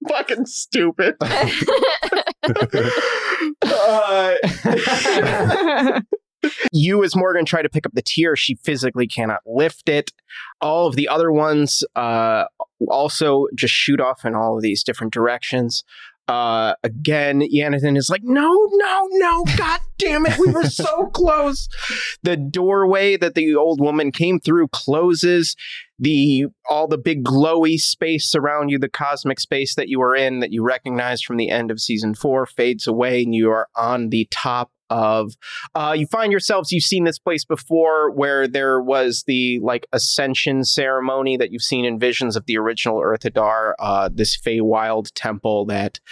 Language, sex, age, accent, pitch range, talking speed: English, male, 30-49, American, 120-170 Hz, 155 wpm